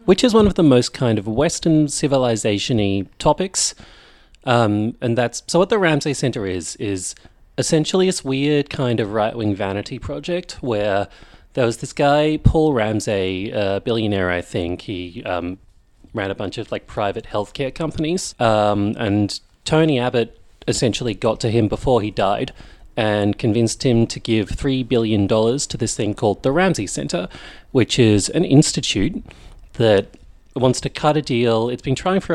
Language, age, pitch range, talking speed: English, 30-49, 105-135 Hz, 165 wpm